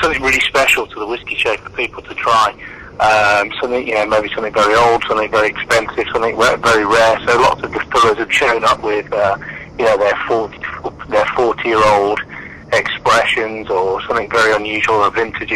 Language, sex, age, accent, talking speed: English, male, 30-49, British, 195 wpm